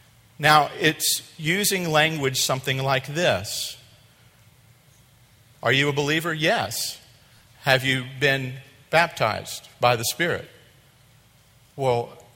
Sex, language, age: male, English, 50-69